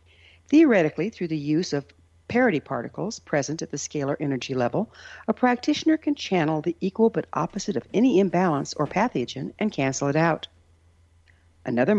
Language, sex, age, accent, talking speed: English, female, 60-79, American, 155 wpm